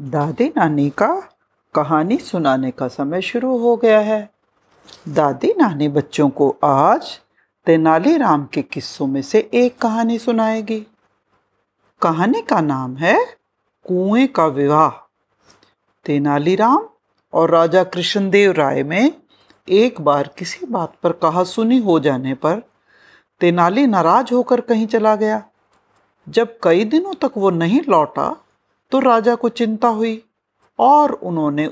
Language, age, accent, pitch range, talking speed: Hindi, 50-69, native, 160-255 Hz, 125 wpm